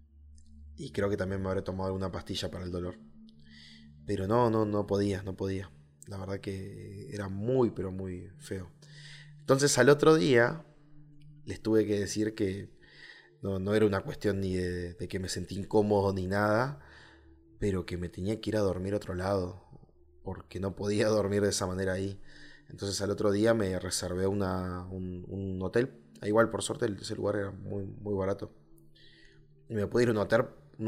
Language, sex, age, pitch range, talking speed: Spanish, male, 20-39, 95-120 Hz, 190 wpm